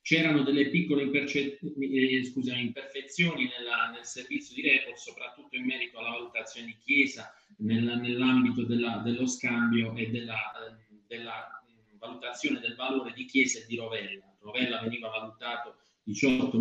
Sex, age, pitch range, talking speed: male, 20-39, 120-155 Hz, 120 wpm